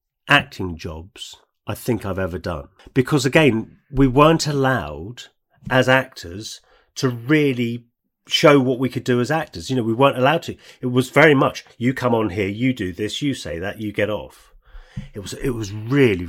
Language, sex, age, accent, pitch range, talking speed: English, male, 40-59, British, 95-130 Hz, 190 wpm